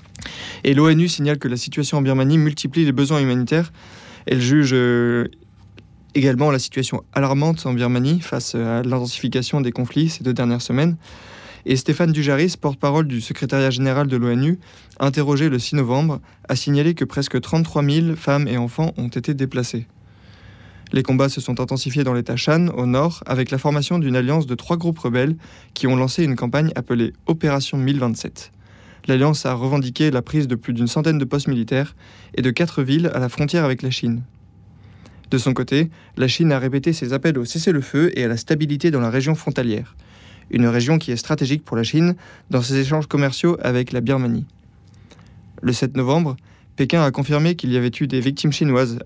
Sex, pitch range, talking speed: male, 120-150 Hz, 185 wpm